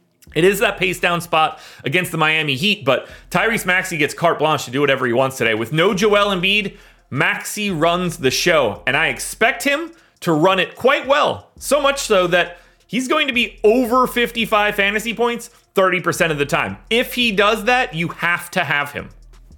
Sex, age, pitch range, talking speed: male, 30-49, 135-185 Hz, 195 wpm